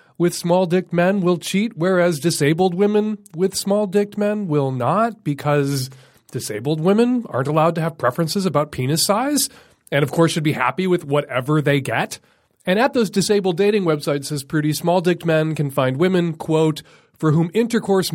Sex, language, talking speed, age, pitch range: male, English, 180 wpm, 30-49, 140-185 Hz